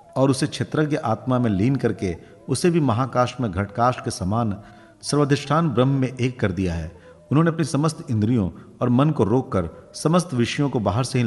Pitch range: 105-140 Hz